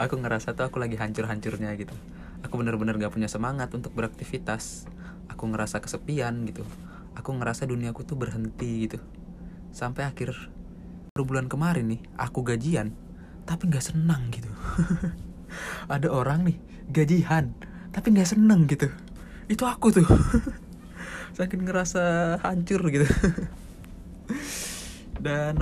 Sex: male